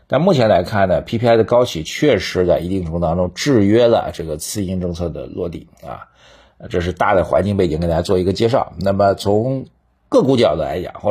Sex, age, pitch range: male, 50-69, 90-115 Hz